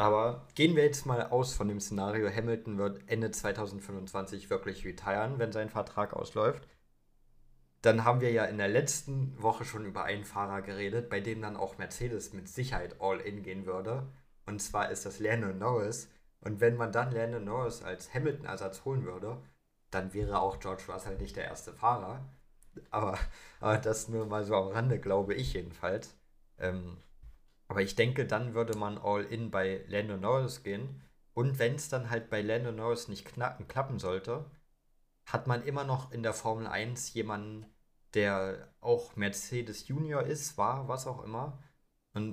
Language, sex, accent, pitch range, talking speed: German, male, German, 100-120 Hz, 170 wpm